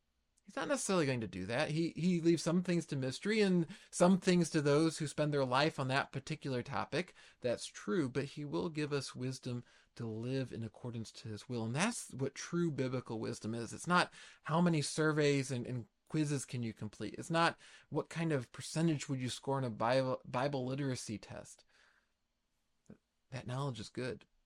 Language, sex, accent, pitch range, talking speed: English, male, American, 130-165 Hz, 195 wpm